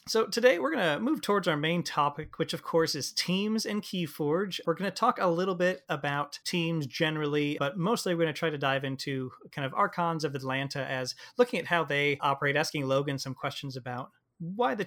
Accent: American